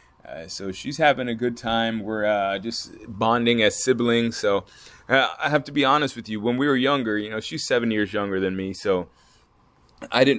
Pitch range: 95-120 Hz